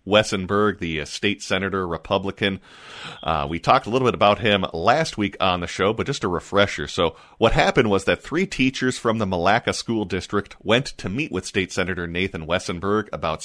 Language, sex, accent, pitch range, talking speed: English, male, American, 85-115 Hz, 190 wpm